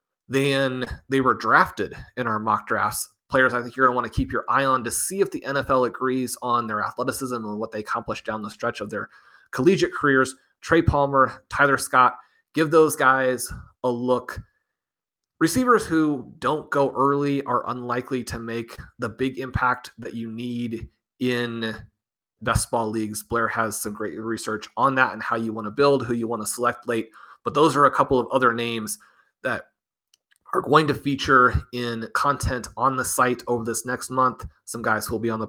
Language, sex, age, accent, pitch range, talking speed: English, male, 30-49, American, 115-130 Hz, 195 wpm